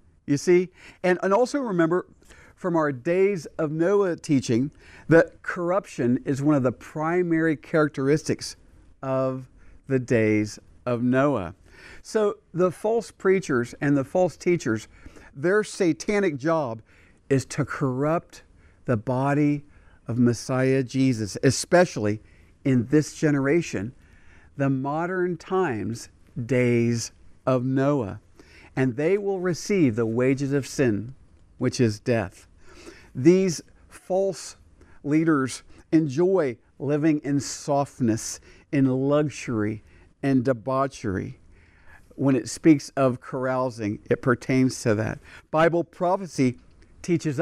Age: 50-69